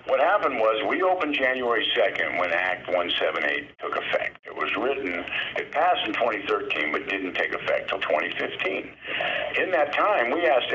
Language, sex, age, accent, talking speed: English, male, 50-69, American, 165 wpm